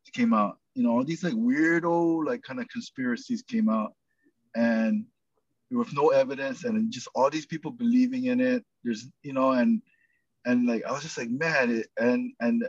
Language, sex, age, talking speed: English, male, 20-39, 185 wpm